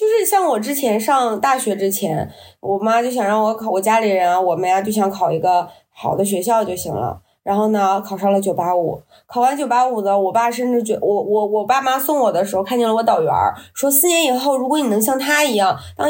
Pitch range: 195-270 Hz